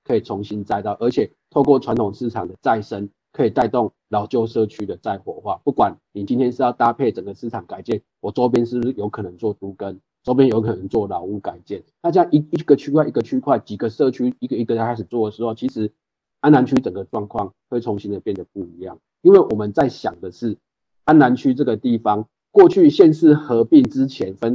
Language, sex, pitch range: Chinese, male, 110-150 Hz